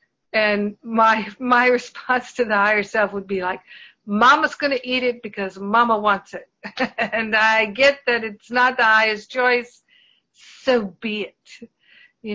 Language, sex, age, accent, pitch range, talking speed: English, female, 50-69, American, 210-260 Hz, 155 wpm